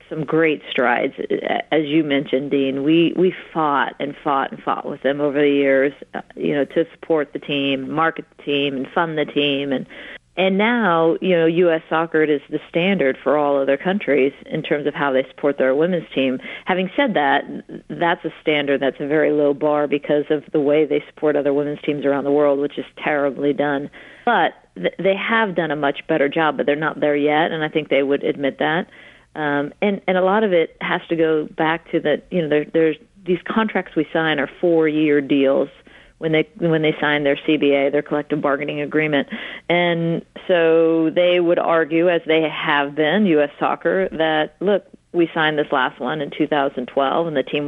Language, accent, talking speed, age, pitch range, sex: English, American, 205 wpm, 40-59, 145-165 Hz, female